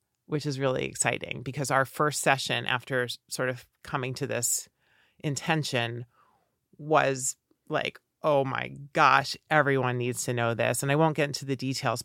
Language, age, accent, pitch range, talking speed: English, 40-59, American, 135-165 Hz, 160 wpm